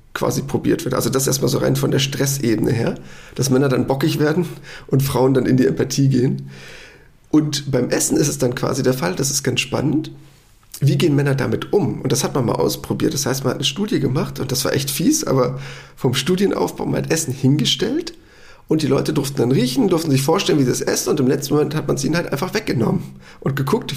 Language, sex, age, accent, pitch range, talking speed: German, male, 40-59, German, 130-160 Hz, 235 wpm